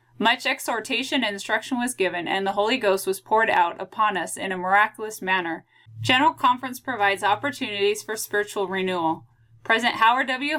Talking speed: 165 wpm